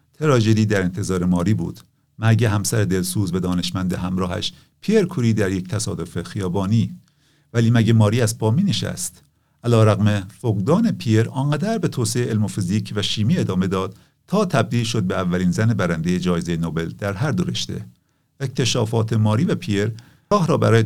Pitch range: 100-130 Hz